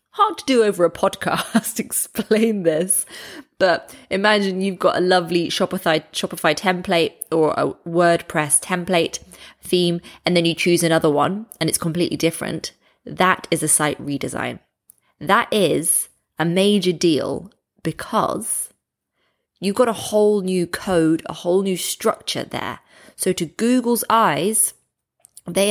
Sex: female